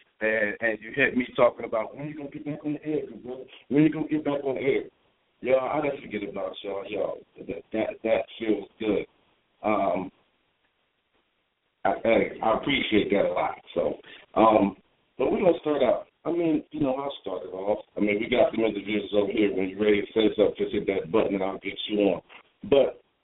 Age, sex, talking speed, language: 50-69, male, 215 wpm, English